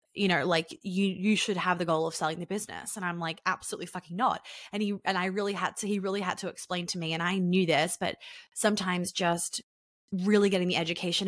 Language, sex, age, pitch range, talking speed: English, female, 20-39, 180-235 Hz, 235 wpm